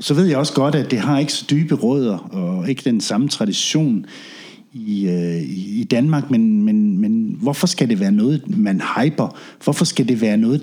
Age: 60-79